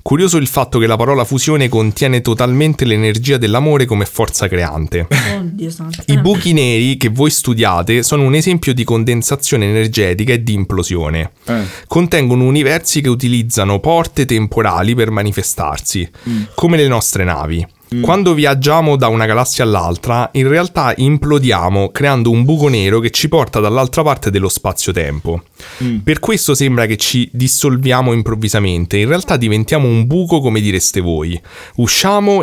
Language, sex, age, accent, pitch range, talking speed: Italian, male, 30-49, native, 105-145 Hz, 140 wpm